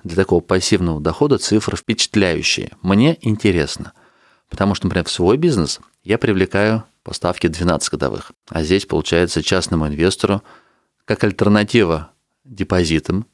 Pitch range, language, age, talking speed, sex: 90-110 Hz, Russian, 30-49, 120 wpm, male